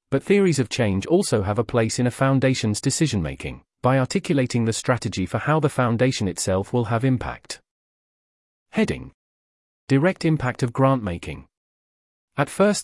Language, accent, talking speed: English, British, 145 wpm